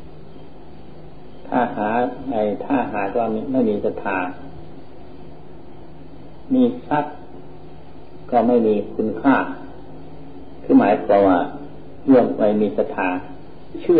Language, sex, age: Thai, male, 60-79